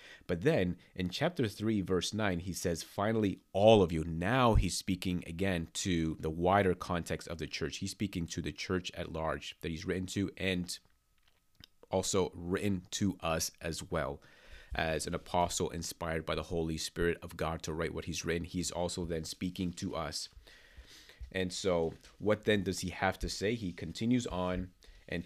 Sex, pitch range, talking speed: male, 85-95 Hz, 180 wpm